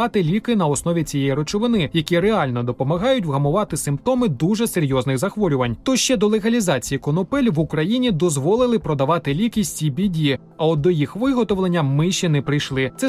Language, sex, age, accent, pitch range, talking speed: Ukrainian, male, 20-39, native, 150-225 Hz, 160 wpm